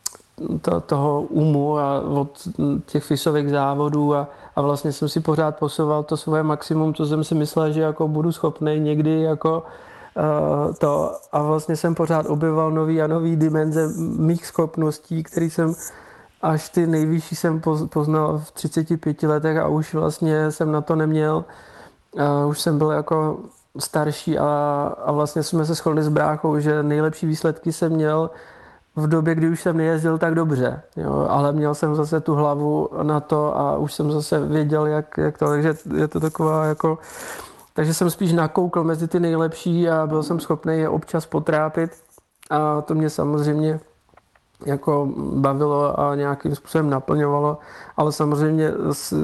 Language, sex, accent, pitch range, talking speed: Czech, male, native, 150-160 Hz, 160 wpm